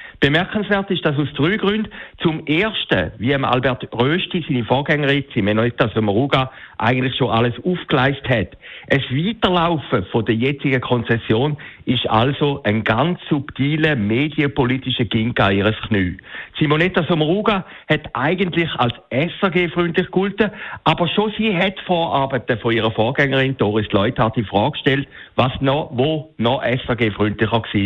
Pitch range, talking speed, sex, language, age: 115-165 Hz, 130 wpm, male, German, 60-79